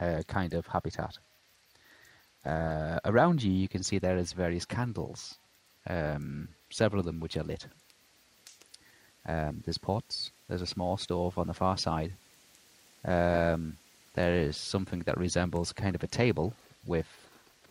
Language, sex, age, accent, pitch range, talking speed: English, male, 30-49, British, 85-110 Hz, 145 wpm